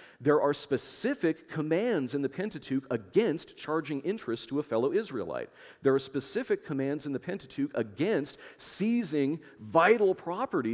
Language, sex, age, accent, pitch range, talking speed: English, male, 40-59, American, 125-185 Hz, 140 wpm